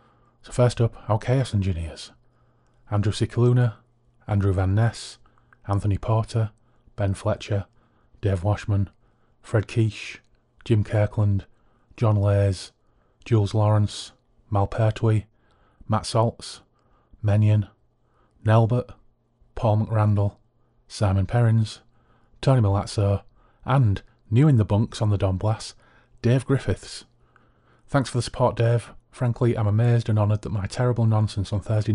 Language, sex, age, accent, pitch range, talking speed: English, male, 30-49, British, 105-120 Hz, 120 wpm